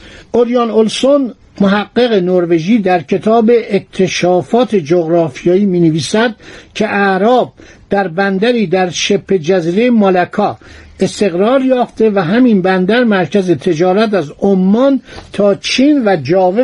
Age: 60-79